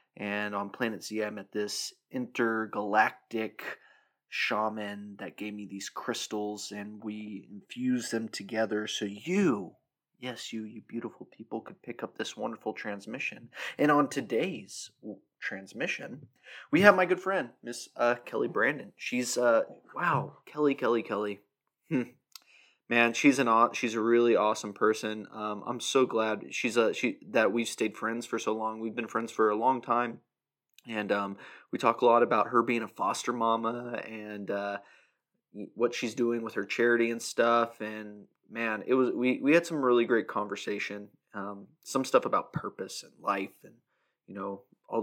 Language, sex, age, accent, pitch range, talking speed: English, male, 20-39, American, 105-120 Hz, 165 wpm